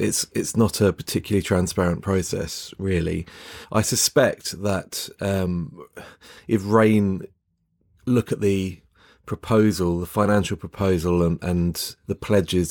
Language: English